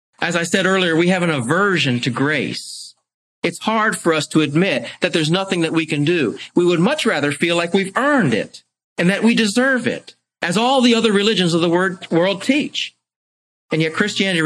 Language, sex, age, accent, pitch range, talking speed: English, male, 40-59, American, 130-195 Hz, 205 wpm